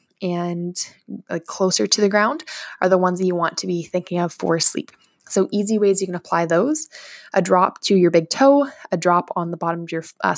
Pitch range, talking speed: 180-210 Hz, 220 wpm